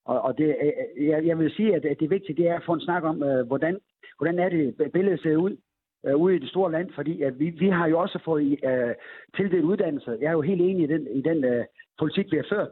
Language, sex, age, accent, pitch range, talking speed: Danish, male, 60-79, native, 140-175 Hz, 245 wpm